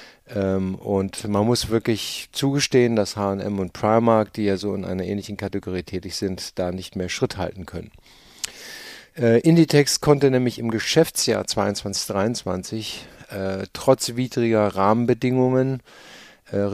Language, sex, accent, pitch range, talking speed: German, male, German, 95-120 Hz, 125 wpm